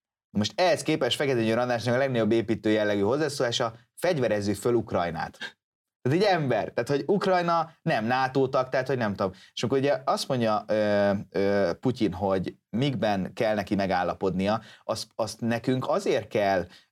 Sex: male